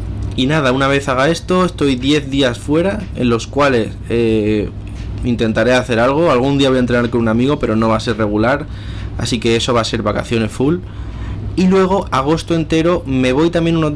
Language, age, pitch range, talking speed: Spanish, 20-39, 115-140 Hz, 200 wpm